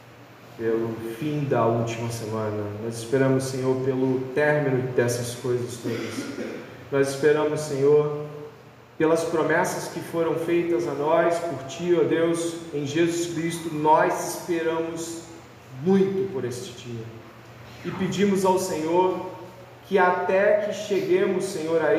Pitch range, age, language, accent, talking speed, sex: 140-185 Hz, 40-59, Portuguese, Brazilian, 130 wpm, male